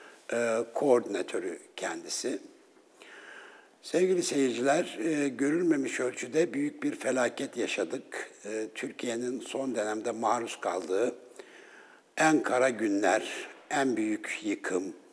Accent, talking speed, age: native, 85 wpm, 60-79